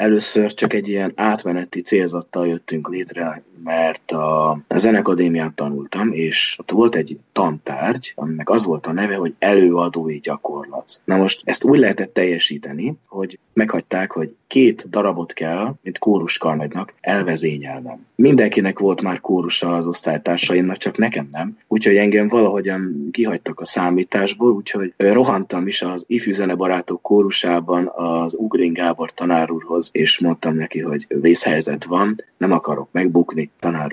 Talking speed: 130 wpm